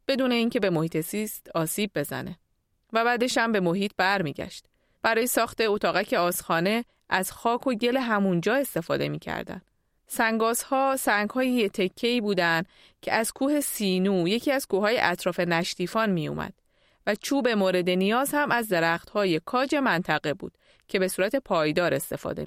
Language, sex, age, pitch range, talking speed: Persian, female, 30-49, 185-250 Hz, 145 wpm